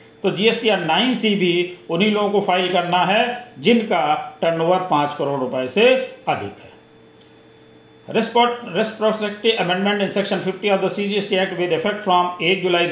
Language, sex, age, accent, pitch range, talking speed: Hindi, male, 40-59, native, 170-210 Hz, 100 wpm